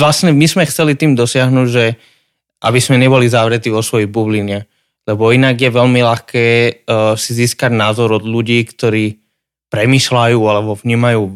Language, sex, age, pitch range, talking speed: Slovak, male, 20-39, 115-135 Hz, 150 wpm